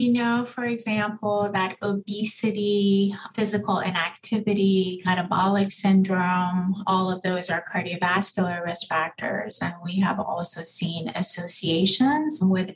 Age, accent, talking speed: 30-49, American, 115 wpm